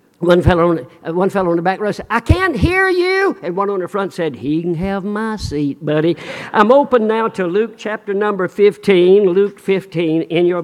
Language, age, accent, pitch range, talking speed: English, 50-69, American, 150-190 Hz, 215 wpm